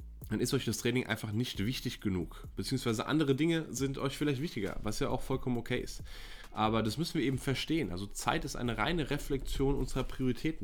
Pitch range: 110-135 Hz